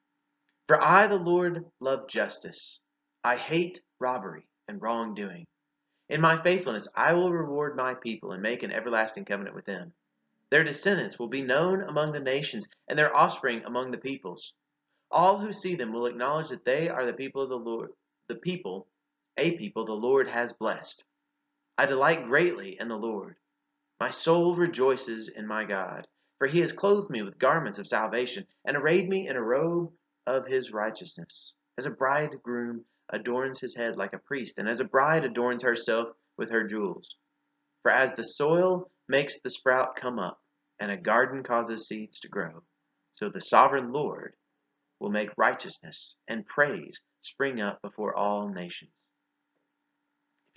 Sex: male